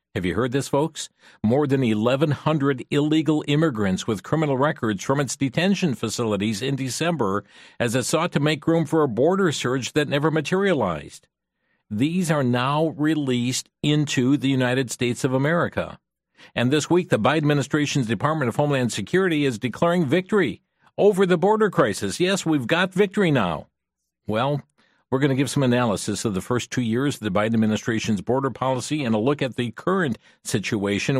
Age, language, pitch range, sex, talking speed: 50-69, English, 115-150 Hz, male, 170 wpm